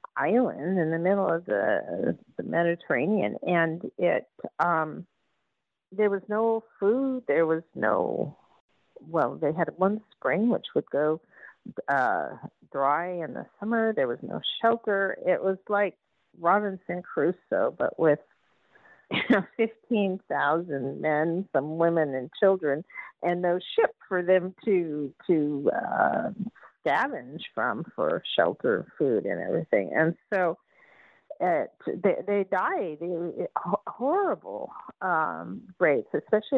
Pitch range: 170-220 Hz